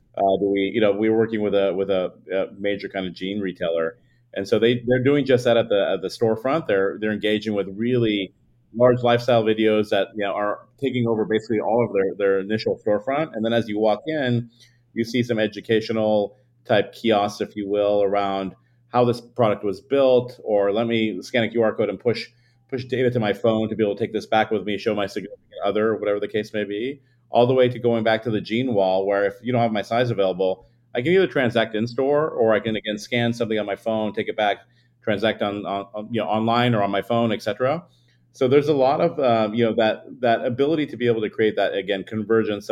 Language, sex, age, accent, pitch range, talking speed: English, male, 40-59, American, 100-120 Hz, 235 wpm